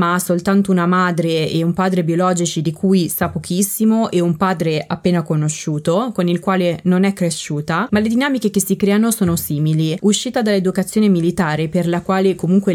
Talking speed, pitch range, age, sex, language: 180 wpm, 165-200 Hz, 20-39, female, Italian